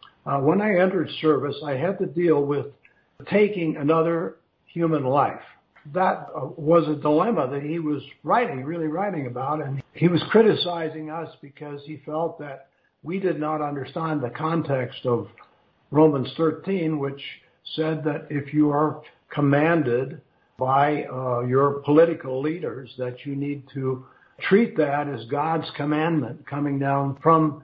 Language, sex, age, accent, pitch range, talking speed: English, male, 60-79, American, 135-160 Hz, 150 wpm